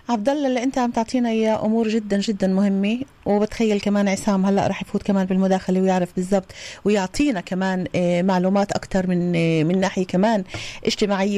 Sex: female